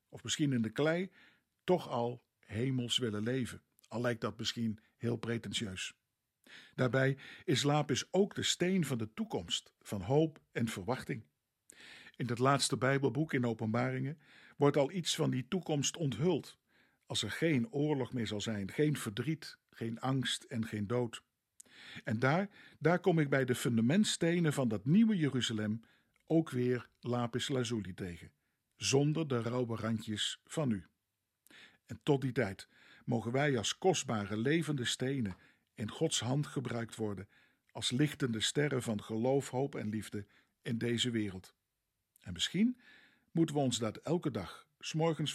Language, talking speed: Dutch, 150 wpm